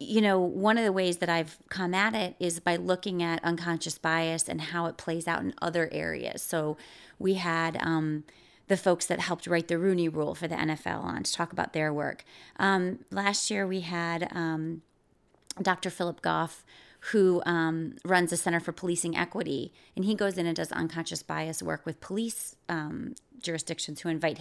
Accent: American